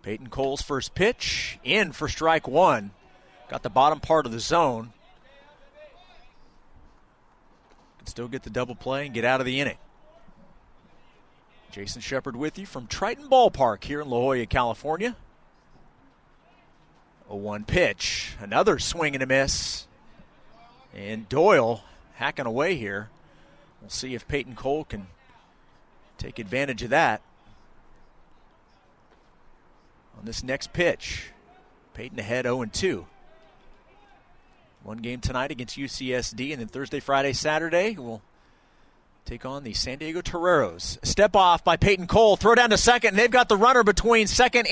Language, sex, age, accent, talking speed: English, male, 40-59, American, 135 wpm